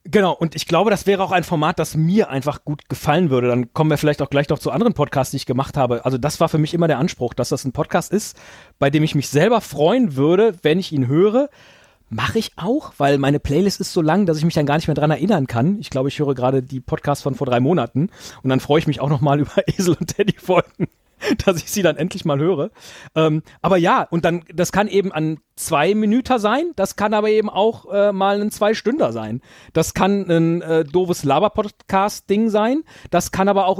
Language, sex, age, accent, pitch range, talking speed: German, male, 40-59, German, 150-200 Hz, 240 wpm